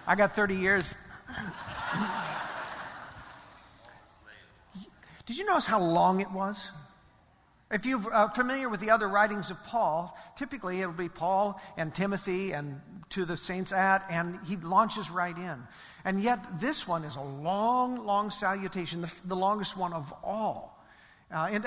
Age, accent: 50-69, American